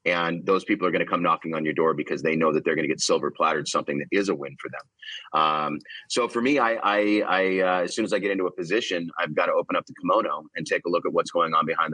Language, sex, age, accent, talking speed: English, male, 30-49, American, 300 wpm